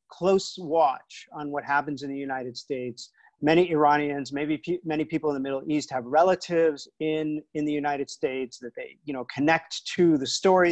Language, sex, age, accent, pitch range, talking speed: English, male, 40-59, American, 145-190 Hz, 190 wpm